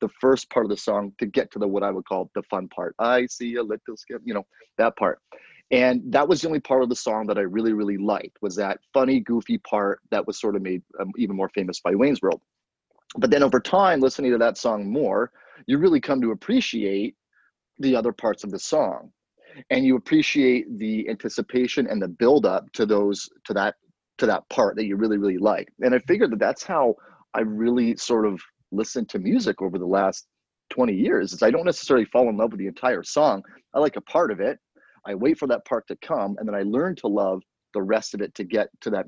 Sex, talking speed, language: male, 235 wpm, English